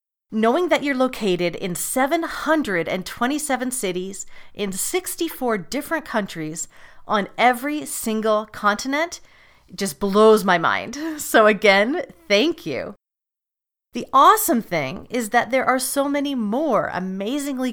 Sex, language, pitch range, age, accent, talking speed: female, English, 190-255 Hz, 40-59, American, 115 wpm